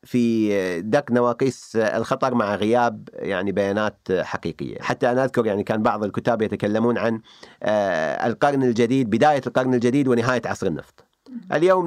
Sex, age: male, 40-59